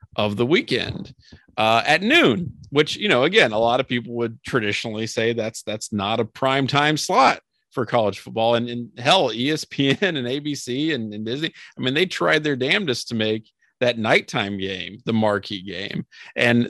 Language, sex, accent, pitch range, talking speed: English, male, American, 105-135 Hz, 180 wpm